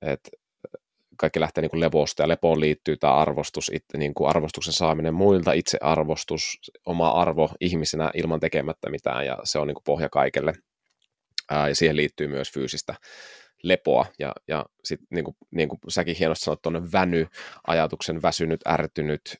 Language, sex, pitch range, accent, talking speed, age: Finnish, male, 80-95 Hz, native, 160 wpm, 30-49